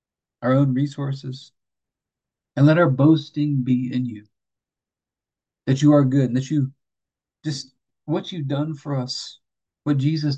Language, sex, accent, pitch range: English, male, American, 115-135 Hz